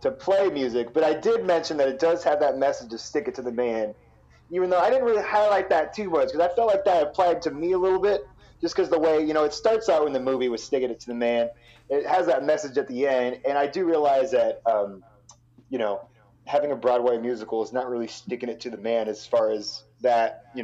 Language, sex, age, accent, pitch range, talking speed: English, male, 30-49, American, 120-165 Hz, 260 wpm